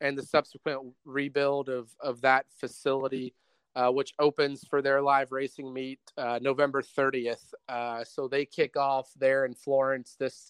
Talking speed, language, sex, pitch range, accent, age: 160 wpm, English, male, 135-155 Hz, American, 30-49